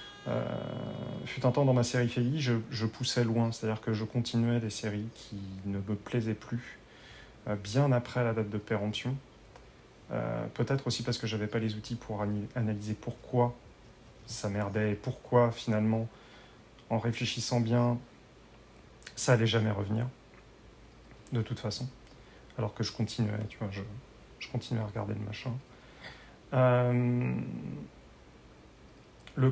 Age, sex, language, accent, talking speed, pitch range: 30-49, male, French, French, 150 wpm, 110-125 Hz